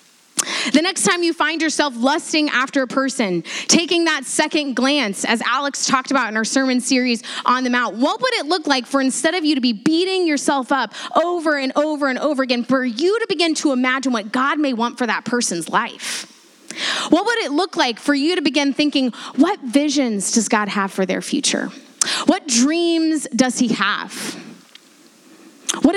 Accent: American